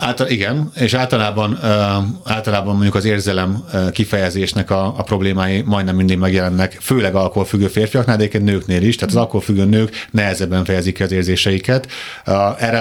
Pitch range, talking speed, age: 95-115 Hz, 145 wpm, 30-49